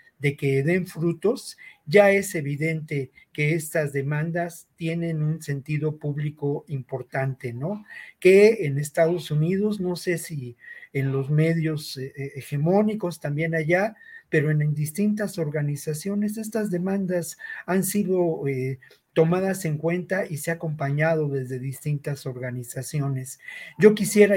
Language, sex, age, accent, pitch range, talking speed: Spanish, male, 50-69, Mexican, 145-180 Hz, 125 wpm